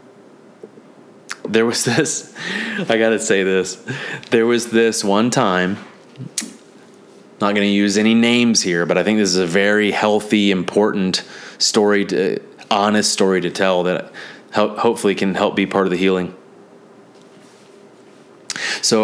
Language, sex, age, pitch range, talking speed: English, male, 30-49, 95-115 Hz, 140 wpm